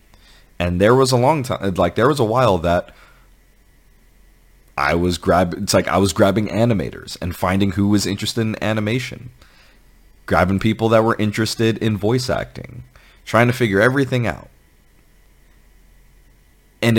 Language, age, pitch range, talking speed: English, 30-49, 75-110 Hz, 150 wpm